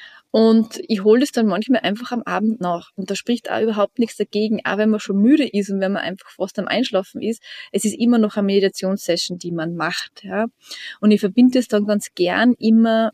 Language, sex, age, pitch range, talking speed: German, female, 20-39, 185-220 Hz, 220 wpm